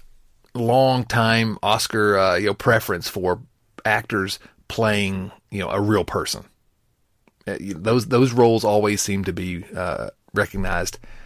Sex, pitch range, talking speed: male, 95-120 Hz, 145 wpm